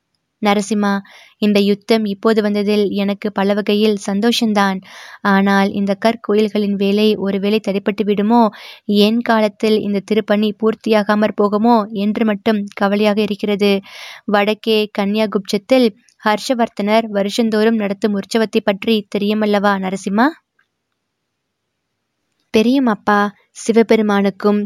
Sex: female